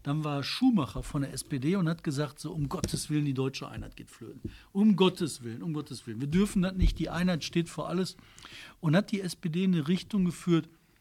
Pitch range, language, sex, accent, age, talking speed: 135-190 Hz, German, male, German, 60-79, 225 wpm